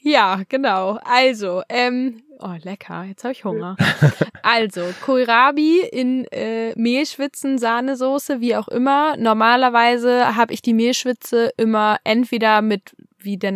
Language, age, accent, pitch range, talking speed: German, 10-29, German, 220-280 Hz, 130 wpm